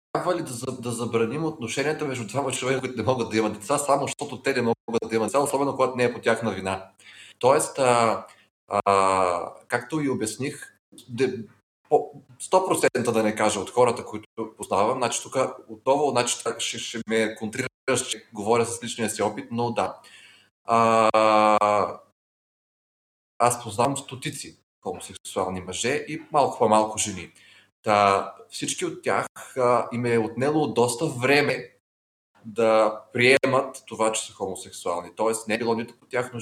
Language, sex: Bulgarian, male